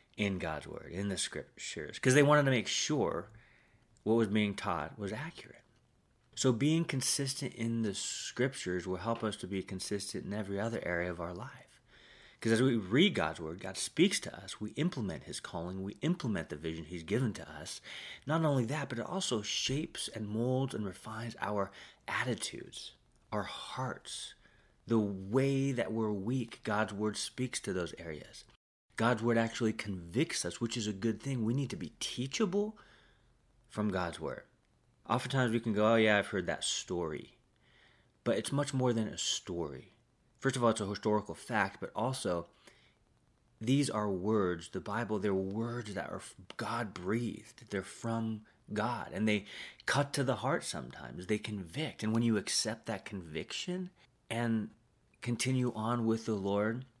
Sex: male